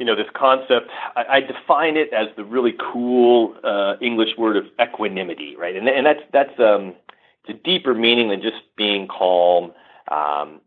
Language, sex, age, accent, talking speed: English, male, 40-59, American, 175 wpm